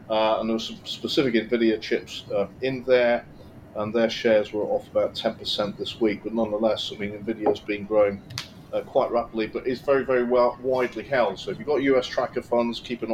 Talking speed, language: 210 wpm, English